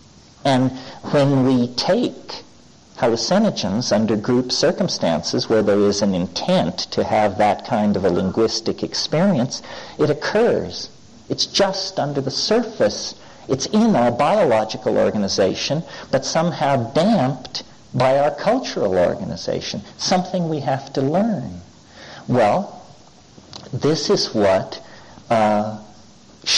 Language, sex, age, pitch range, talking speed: English, male, 50-69, 115-155 Hz, 115 wpm